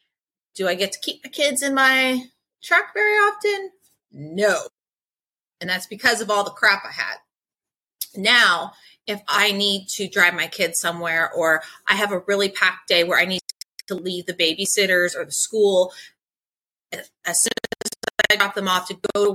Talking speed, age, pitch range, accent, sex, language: 180 wpm, 30-49, 185-225 Hz, American, female, English